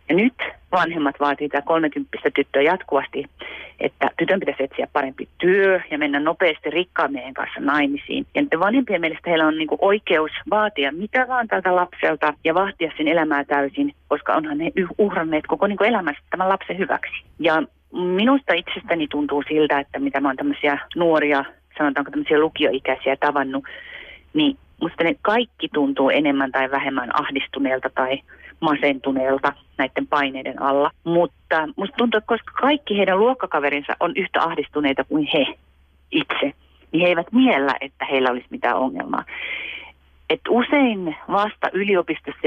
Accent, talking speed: native, 145 wpm